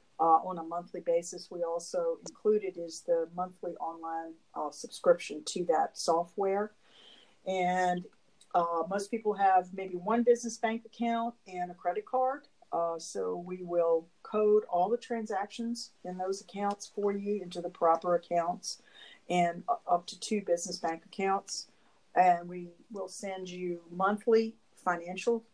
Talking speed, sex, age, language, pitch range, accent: 145 wpm, female, 50-69, English, 175-225 Hz, American